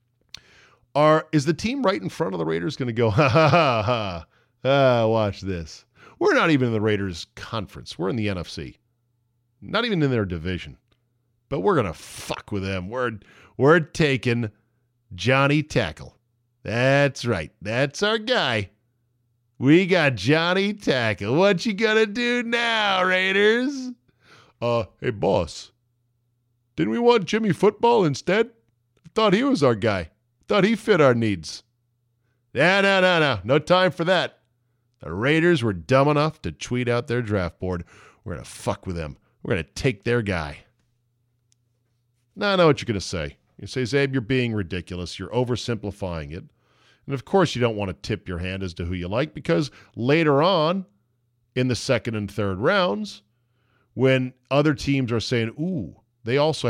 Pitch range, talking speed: 105-155 Hz, 175 wpm